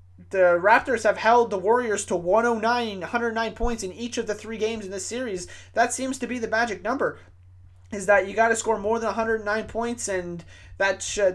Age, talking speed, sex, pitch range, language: 20-39, 205 wpm, male, 180-220 Hz, English